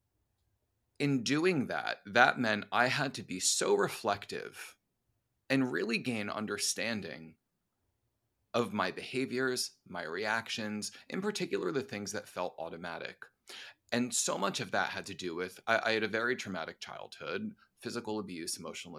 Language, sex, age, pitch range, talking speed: English, male, 30-49, 95-120 Hz, 145 wpm